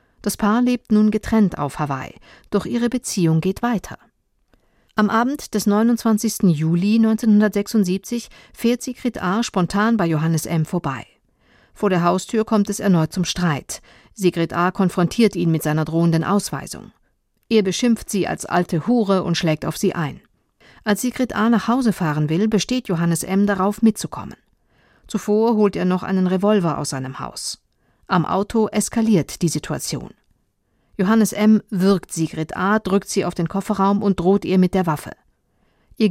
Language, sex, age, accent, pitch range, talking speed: German, female, 50-69, German, 170-215 Hz, 160 wpm